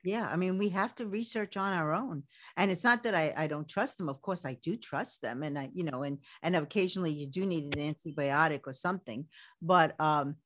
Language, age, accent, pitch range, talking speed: English, 50-69, American, 155-195 Hz, 235 wpm